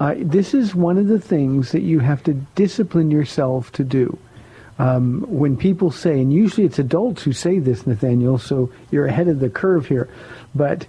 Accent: American